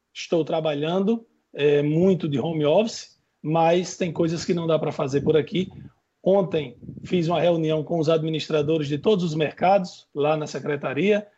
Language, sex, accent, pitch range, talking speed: Portuguese, male, Brazilian, 155-185 Hz, 160 wpm